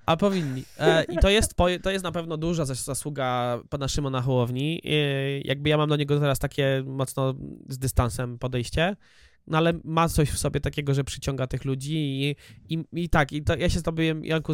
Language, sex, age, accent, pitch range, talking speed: Polish, male, 20-39, native, 125-150 Hz, 200 wpm